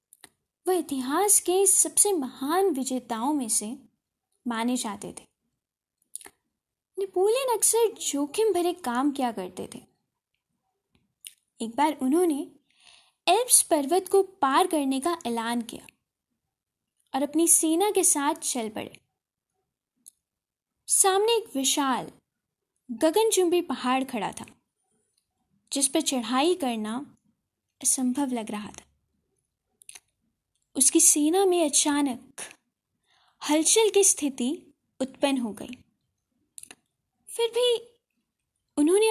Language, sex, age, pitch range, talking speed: Hindi, female, 20-39, 255-360 Hz, 100 wpm